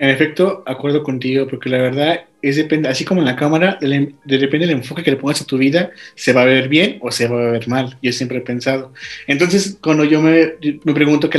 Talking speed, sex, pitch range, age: 240 wpm, male, 130-155 Hz, 20-39